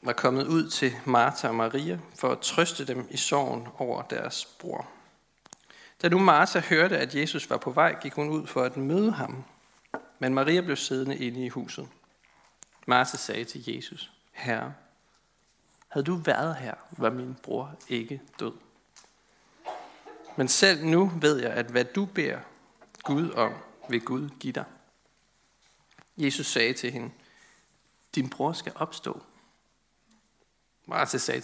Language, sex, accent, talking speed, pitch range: Danish, male, native, 150 wpm, 125-160 Hz